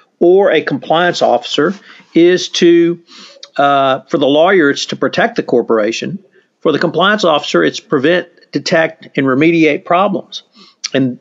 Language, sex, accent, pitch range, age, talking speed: English, male, American, 145-180 Hz, 50-69, 140 wpm